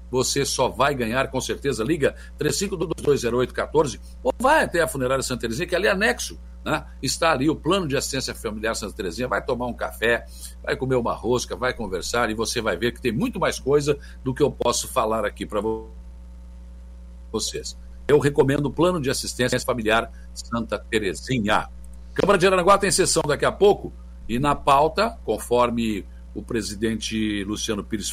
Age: 60-79